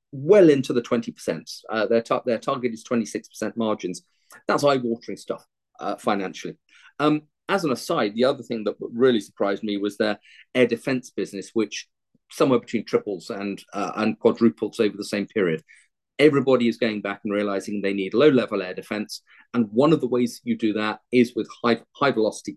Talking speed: 180 wpm